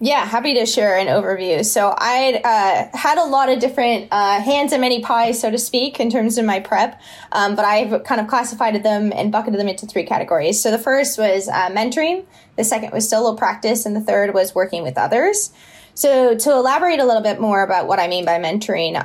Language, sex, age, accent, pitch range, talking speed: English, female, 20-39, American, 200-250 Hz, 225 wpm